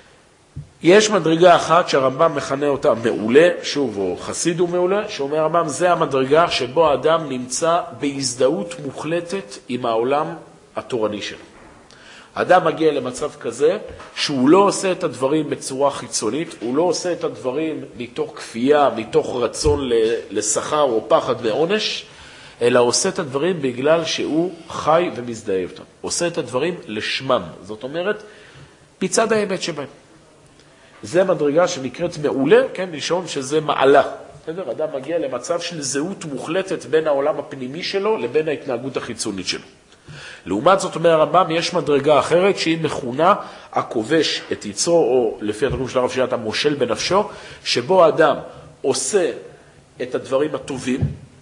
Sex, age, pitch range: male, 50-69, 140-190 Hz